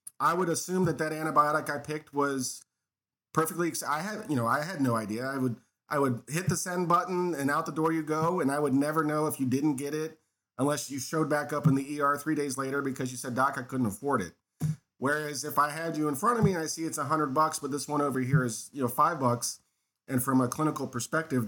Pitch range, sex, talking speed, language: 125-160 Hz, male, 255 wpm, English